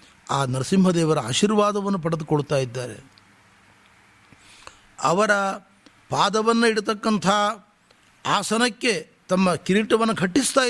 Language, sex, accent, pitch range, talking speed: Kannada, male, native, 140-205 Hz, 65 wpm